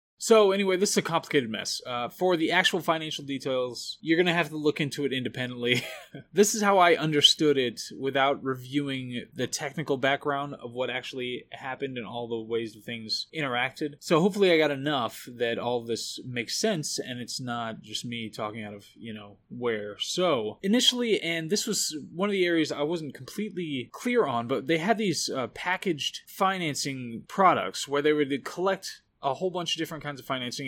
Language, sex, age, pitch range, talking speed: English, male, 20-39, 125-165 Hz, 195 wpm